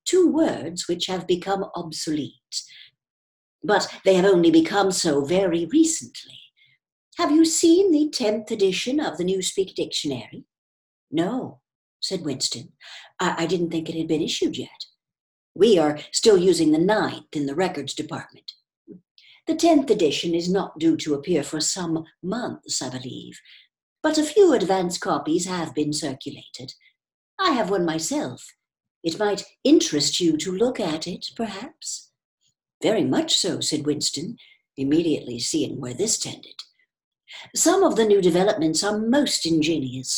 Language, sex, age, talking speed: English, female, 60-79, 150 wpm